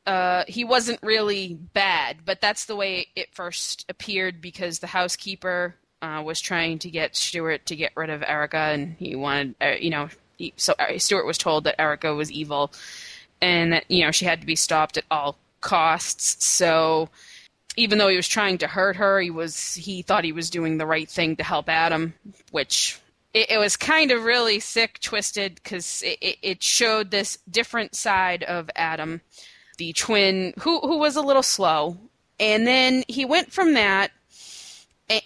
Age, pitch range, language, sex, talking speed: 20-39, 170-230 Hz, English, female, 180 wpm